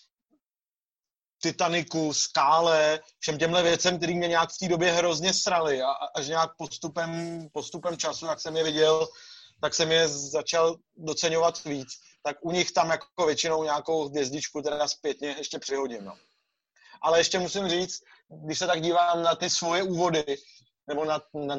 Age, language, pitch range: 30-49, Czech, 155-175 Hz